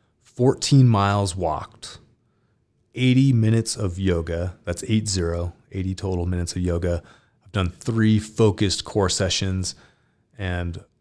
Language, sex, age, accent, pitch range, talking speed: English, male, 30-49, American, 90-115 Hz, 115 wpm